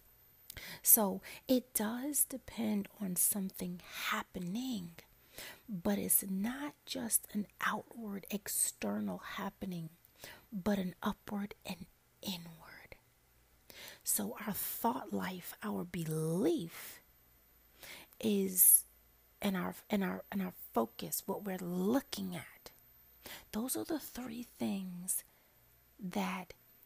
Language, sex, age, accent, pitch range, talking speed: English, female, 30-49, American, 175-210 Hz, 100 wpm